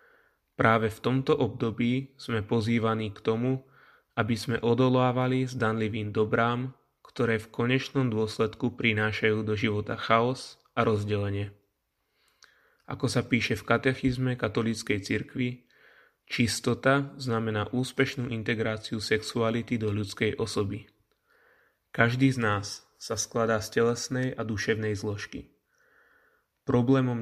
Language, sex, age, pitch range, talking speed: Slovak, male, 20-39, 110-125 Hz, 110 wpm